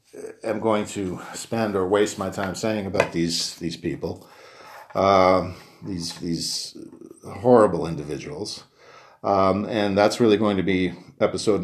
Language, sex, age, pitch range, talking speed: English, male, 50-69, 90-115 Hz, 135 wpm